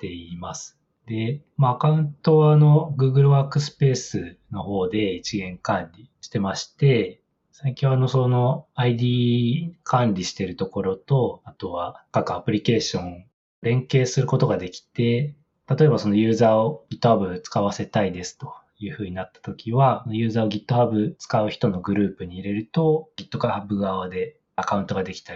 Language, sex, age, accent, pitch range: Japanese, male, 20-39, native, 100-135 Hz